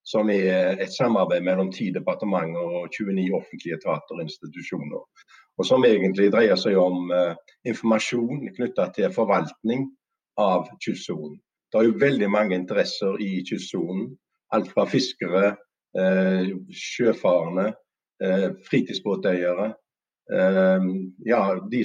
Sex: male